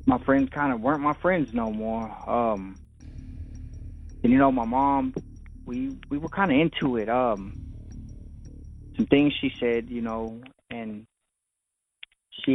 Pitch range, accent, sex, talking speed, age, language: 110-140 Hz, American, male, 150 wpm, 20-39, English